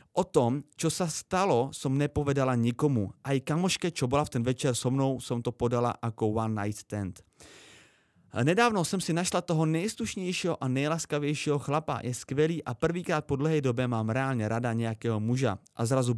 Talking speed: 175 wpm